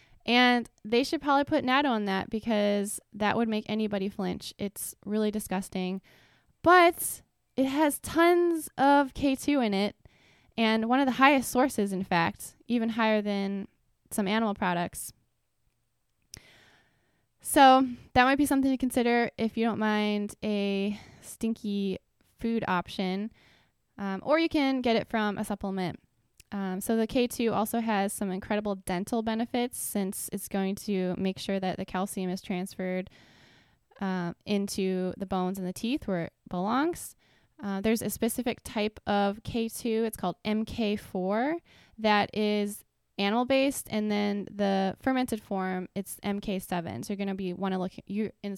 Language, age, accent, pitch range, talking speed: English, 10-29, American, 195-235 Hz, 155 wpm